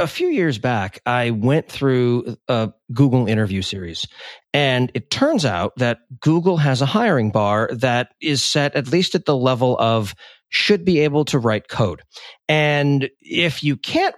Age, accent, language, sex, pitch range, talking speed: 40-59, American, English, male, 115-150 Hz, 170 wpm